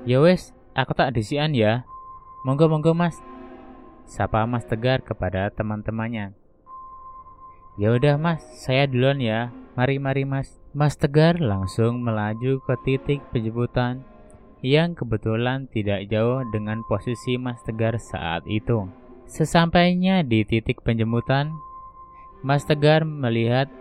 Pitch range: 110-170 Hz